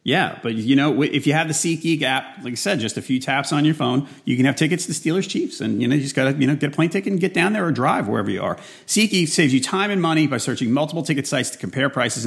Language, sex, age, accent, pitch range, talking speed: English, male, 40-59, American, 125-165 Hz, 315 wpm